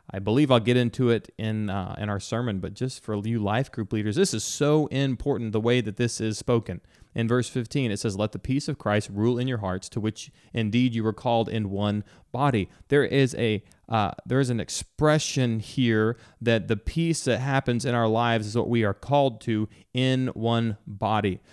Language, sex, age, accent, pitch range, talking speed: English, male, 30-49, American, 110-130 Hz, 215 wpm